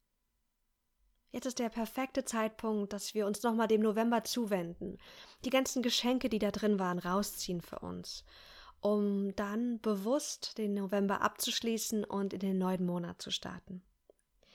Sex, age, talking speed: female, 20-39, 145 wpm